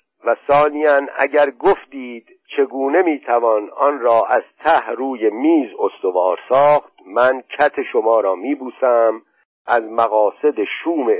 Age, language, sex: 50-69, Persian, male